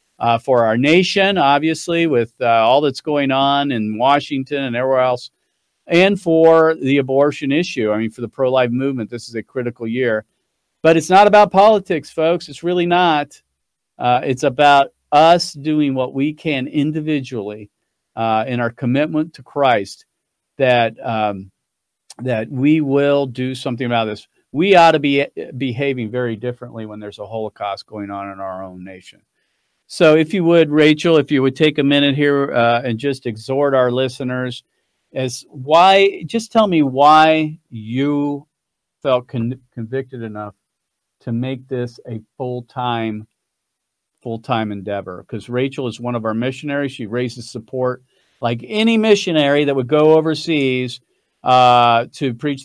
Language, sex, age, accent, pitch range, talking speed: English, male, 50-69, American, 115-150 Hz, 160 wpm